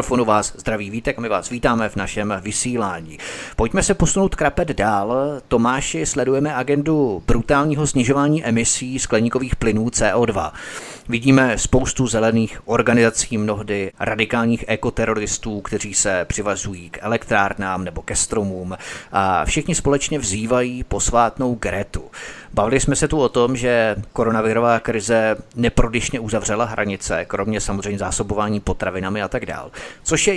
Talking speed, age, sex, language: 130 wpm, 30-49, male, Czech